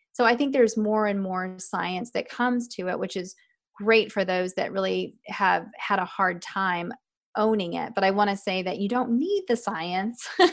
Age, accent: 30-49, American